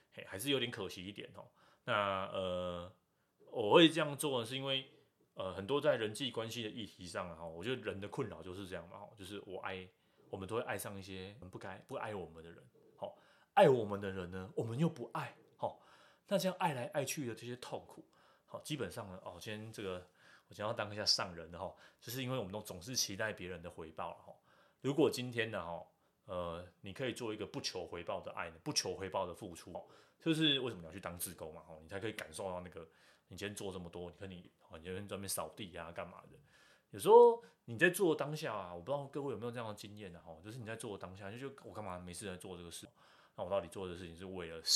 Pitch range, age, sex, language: 90-125 Hz, 20-39, male, Chinese